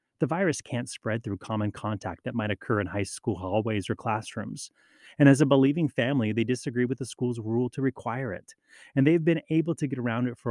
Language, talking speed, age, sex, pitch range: English, 225 wpm, 30-49, male, 110-140 Hz